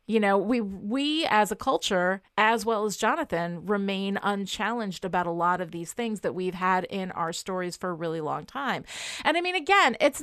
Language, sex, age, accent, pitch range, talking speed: English, female, 30-49, American, 195-260 Hz, 205 wpm